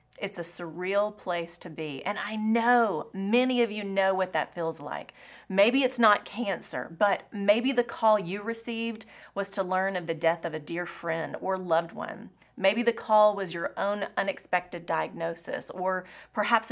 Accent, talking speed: American, 180 wpm